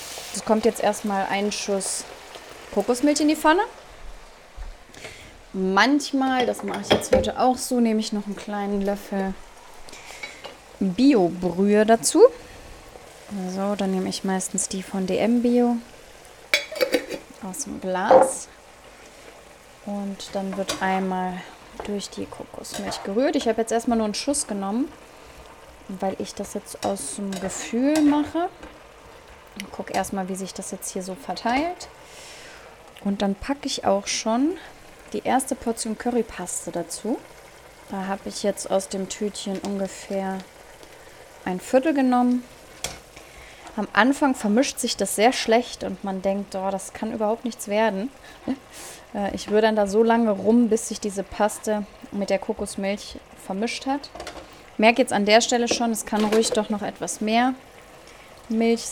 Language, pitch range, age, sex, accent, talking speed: German, 195-250 Hz, 20-39, female, German, 145 wpm